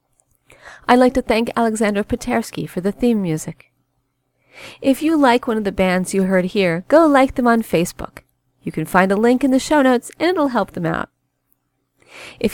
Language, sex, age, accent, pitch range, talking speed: English, female, 40-59, American, 190-255 Hz, 190 wpm